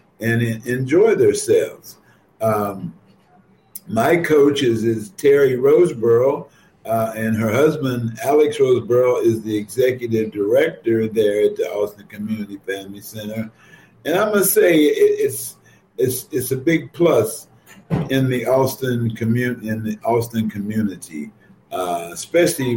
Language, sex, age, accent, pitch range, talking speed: English, male, 50-69, American, 110-140 Hz, 120 wpm